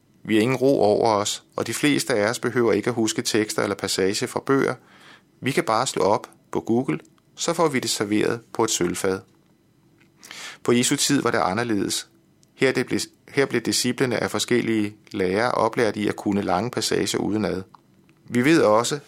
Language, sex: Danish, male